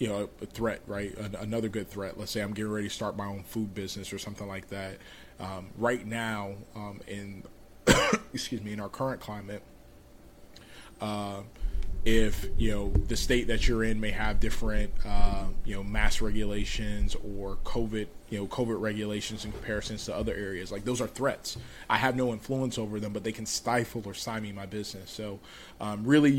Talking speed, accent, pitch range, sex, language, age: 195 wpm, American, 100-115 Hz, male, English, 20-39